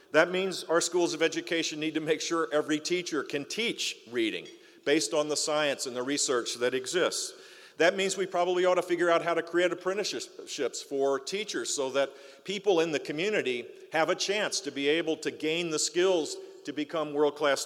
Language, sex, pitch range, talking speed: English, male, 150-190 Hz, 195 wpm